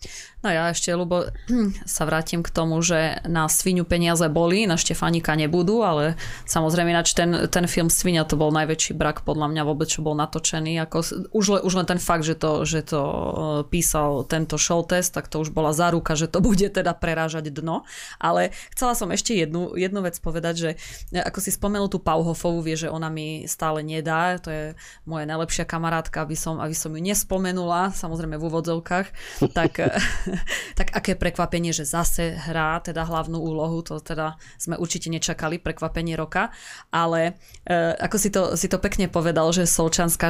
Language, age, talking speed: Slovak, 20-39, 170 wpm